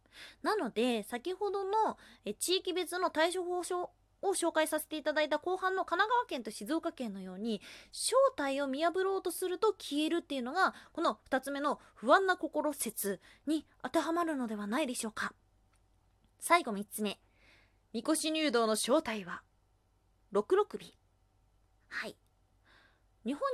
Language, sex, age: Japanese, female, 20-39